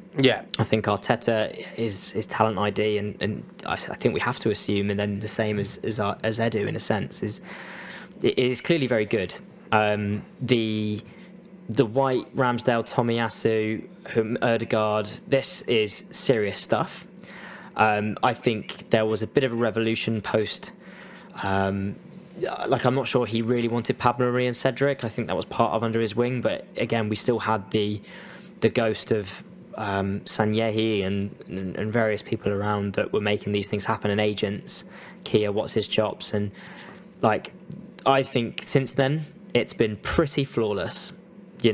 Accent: British